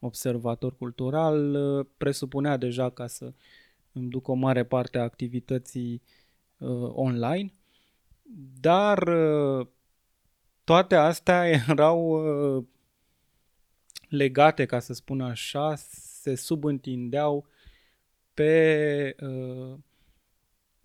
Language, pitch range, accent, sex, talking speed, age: Romanian, 125-150 Hz, native, male, 85 wpm, 20-39